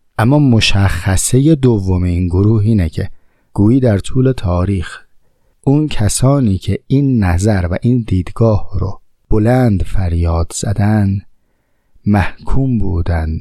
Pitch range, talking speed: 90-115 Hz, 110 wpm